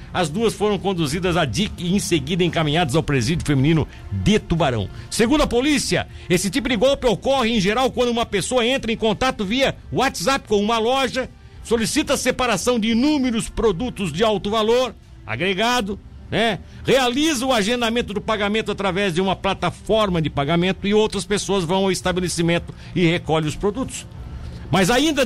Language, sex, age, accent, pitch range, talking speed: Portuguese, male, 60-79, Brazilian, 170-240 Hz, 165 wpm